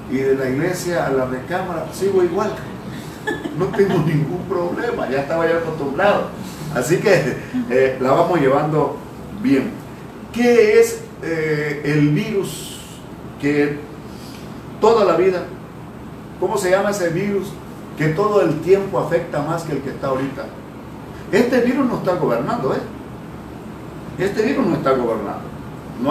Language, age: Spanish, 50-69